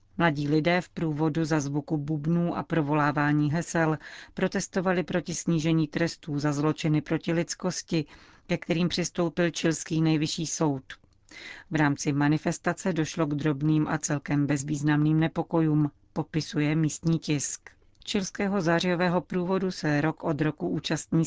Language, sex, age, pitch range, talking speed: Czech, female, 40-59, 150-170 Hz, 125 wpm